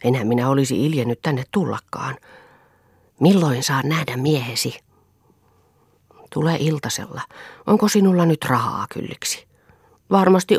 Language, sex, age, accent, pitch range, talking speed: Finnish, female, 40-59, native, 125-175 Hz, 100 wpm